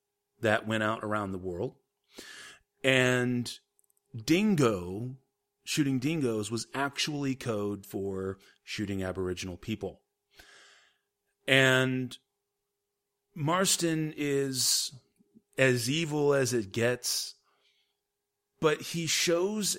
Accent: American